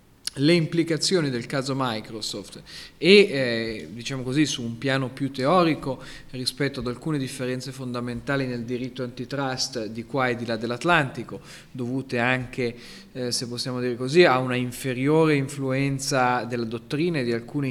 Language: Italian